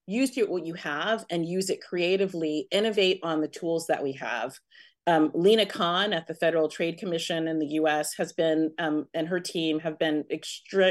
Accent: American